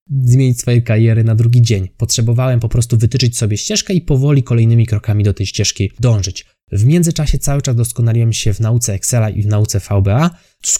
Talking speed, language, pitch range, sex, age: 190 wpm, Polish, 110-135 Hz, male, 20-39